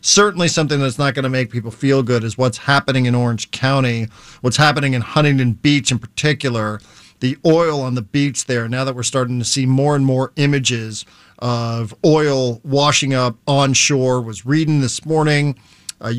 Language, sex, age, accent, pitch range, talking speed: English, male, 40-59, American, 120-150 Hz, 185 wpm